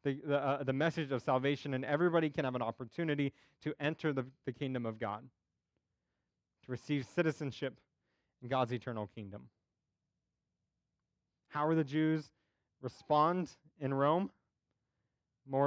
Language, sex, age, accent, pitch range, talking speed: English, male, 20-39, American, 125-150 Hz, 130 wpm